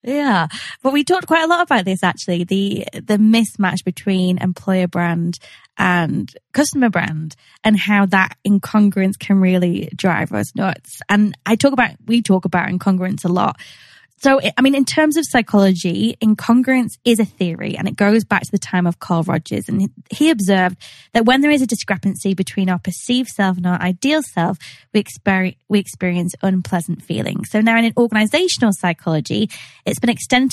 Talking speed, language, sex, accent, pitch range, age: 175 wpm, English, female, British, 180-230 Hz, 20-39